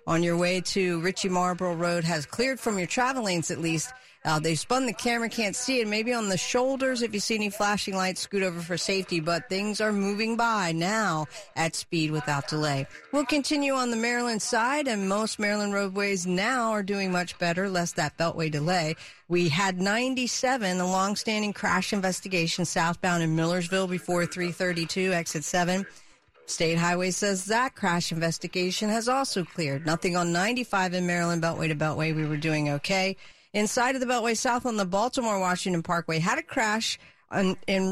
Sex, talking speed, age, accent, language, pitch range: female, 180 wpm, 50-69, American, English, 170-215 Hz